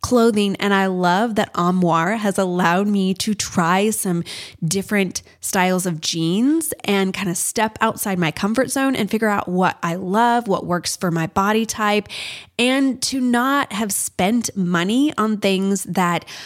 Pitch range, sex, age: 180-235 Hz, female, 20-39